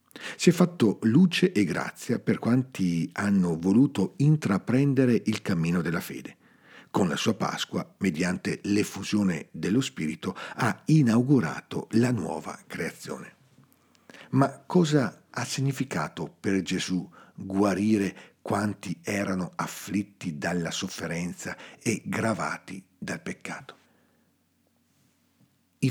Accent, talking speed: native, 105 wpm